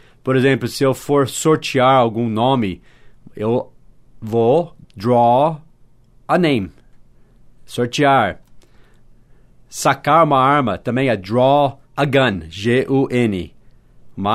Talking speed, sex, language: 100 wpm, male, English